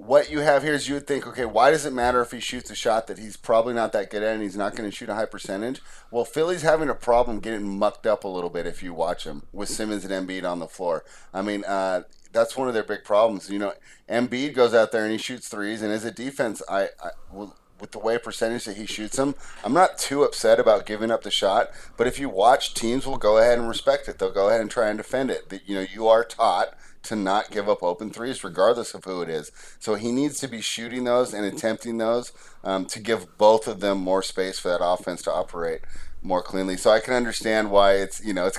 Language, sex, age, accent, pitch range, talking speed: English, male, 30-49, American, 95-120 Hz, 260 wpm